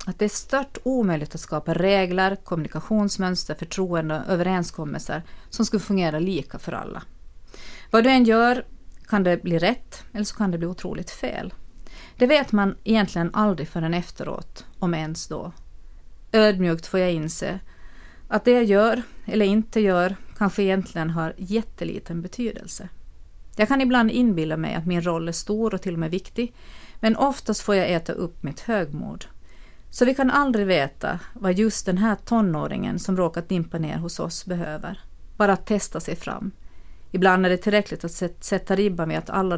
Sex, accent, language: female, Swedish, Finnish